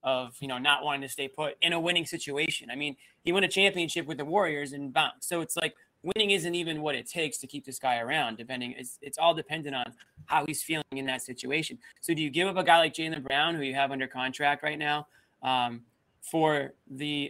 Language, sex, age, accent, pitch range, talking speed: English, male, 20-39, American, 135-165 Hz, 240 wpm